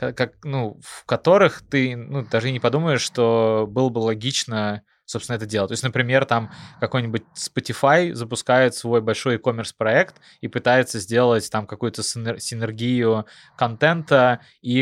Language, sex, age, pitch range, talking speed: Russian, male, 20-39, 110-130 Hz, 140 wpm